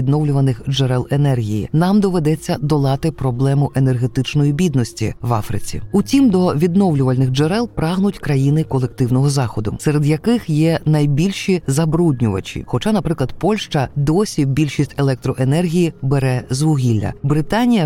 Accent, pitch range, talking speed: native, 130-180 Hz, 115 wpm